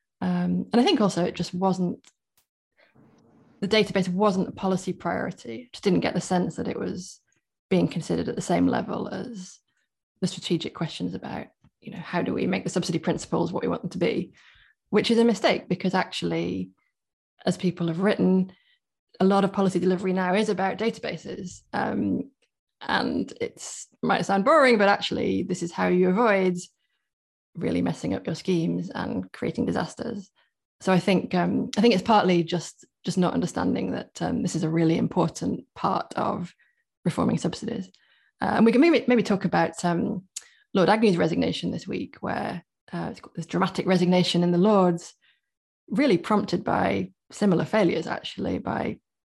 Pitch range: 175-210 Hz